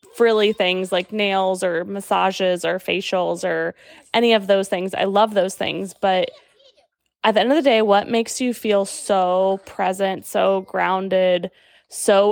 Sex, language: female, English